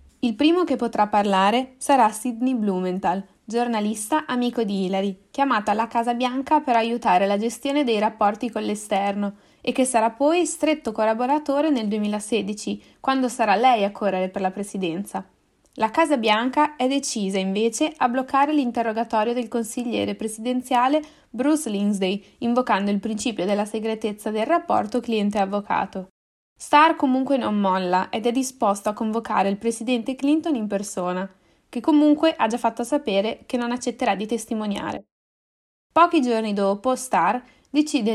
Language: Italian